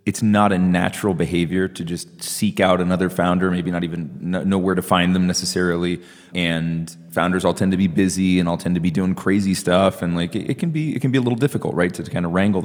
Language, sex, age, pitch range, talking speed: English, male, 30-49, 90-110 Hz, 240 wpm